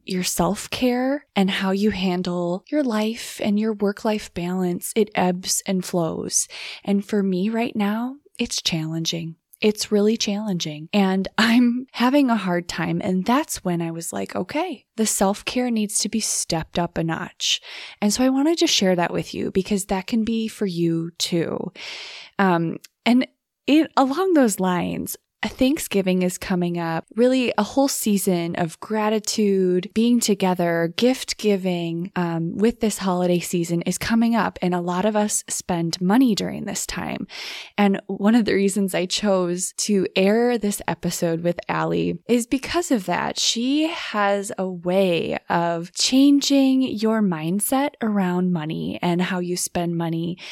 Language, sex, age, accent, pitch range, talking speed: English, female, 20-39, American, 175-225 Hz, 160 wpm